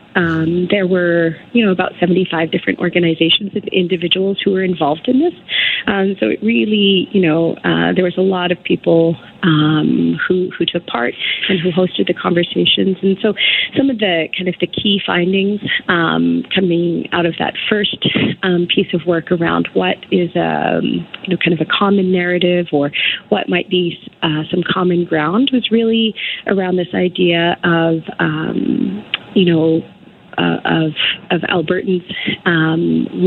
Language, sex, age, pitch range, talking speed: English, female, 30-49, 170-190 Hz, 170 wpm